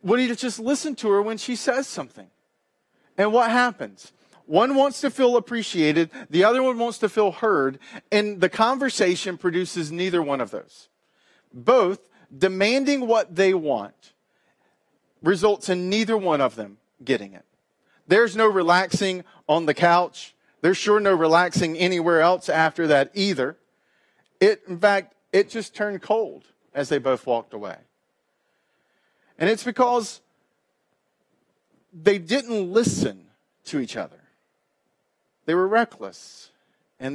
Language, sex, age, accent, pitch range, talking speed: English, male, 40-59, American, 140-210 Hz, 140 wpm